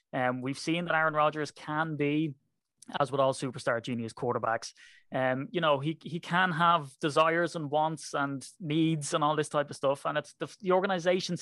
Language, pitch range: English, 125-150 Hz